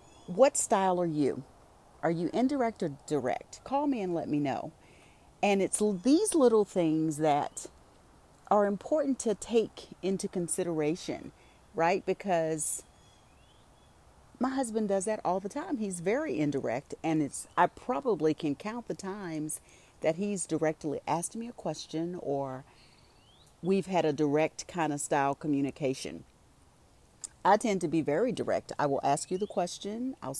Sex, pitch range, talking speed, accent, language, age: female, 150-210 Hz, 150 wpm, American, English, 40-59